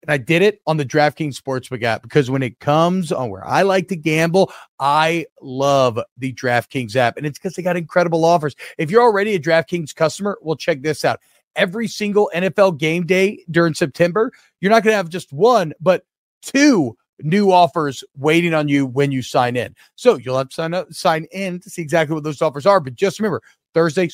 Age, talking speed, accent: 40-59, 210 wpm, American